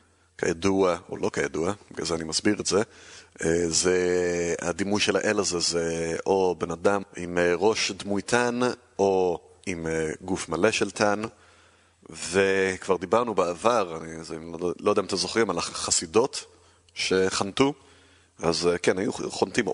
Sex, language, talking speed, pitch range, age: male, Hebrew, 145 wpm, 85-100 Hz, 30-49